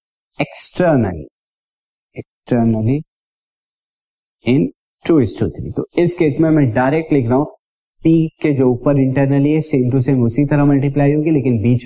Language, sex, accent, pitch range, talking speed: Hindi, male, native, 120-150 Hz, 160 wpm